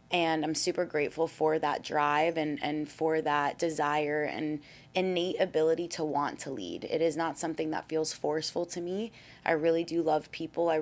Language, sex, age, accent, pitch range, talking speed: English, female, 20-39, American, 150-170 Hz, 190 wpm